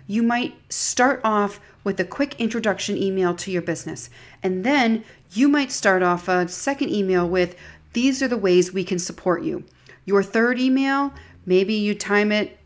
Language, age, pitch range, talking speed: English, 40-59, 180-240 Hz, 175 wpm